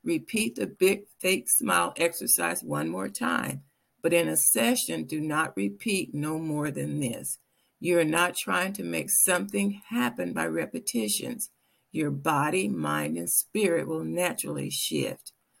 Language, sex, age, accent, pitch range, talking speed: English, female, 60-79, American, 140-195 Hz, 140 wpm